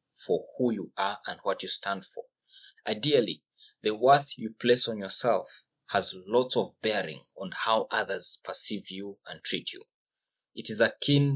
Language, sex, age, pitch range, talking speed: English, male, 20-39, 110-145 Hz, 165 wpm